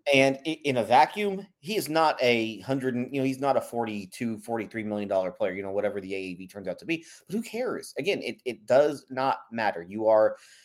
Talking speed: 215 wpm